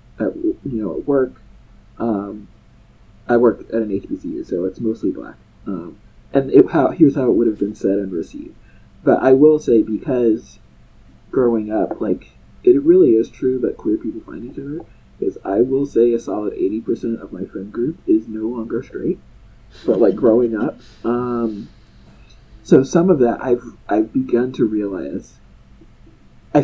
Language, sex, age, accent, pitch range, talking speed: English, male, 30-49, American, 110-160 Hz, 170 wpm